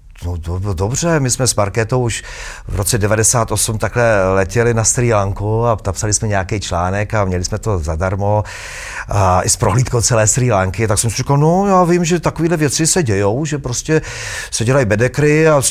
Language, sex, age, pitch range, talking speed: Czech, male, 40-59, 110-165 Hz, 195 wpm